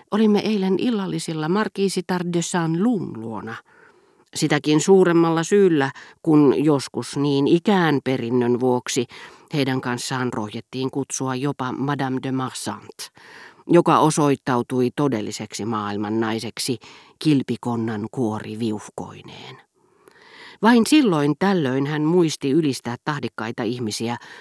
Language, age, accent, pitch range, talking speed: Finnish, 40-59, native, 125-155 Hz, 95 wpm